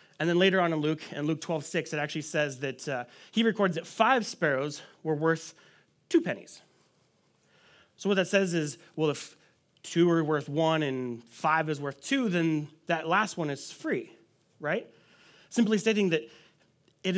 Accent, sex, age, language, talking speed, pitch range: American, male, 30-49, English, 180 wpm, 155-200 Hz